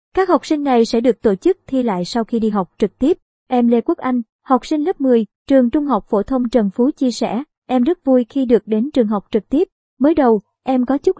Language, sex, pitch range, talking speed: Vietnamese, male, 220-275 Hz, 255 wpm